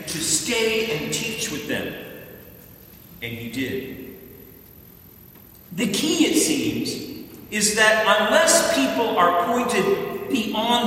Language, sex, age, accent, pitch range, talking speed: English, male, 40-59, American, 195-240 Hz, 110 wpm